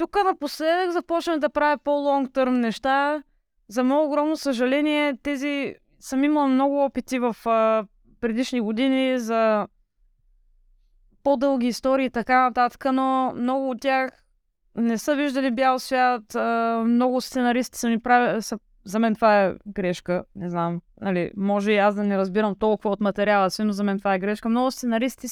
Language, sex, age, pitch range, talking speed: Bulgarian, female, 20-39, 220-275 Hz, 150 wpm